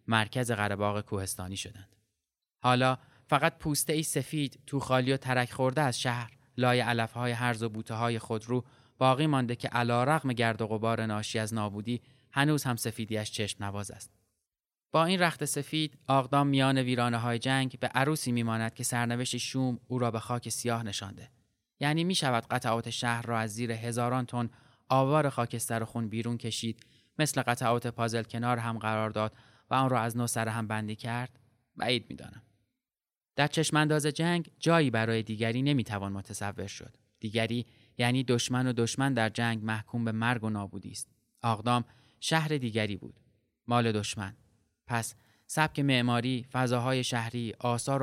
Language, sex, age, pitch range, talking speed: Persian, male, 20-39, 110-130 Hz, 165 wpm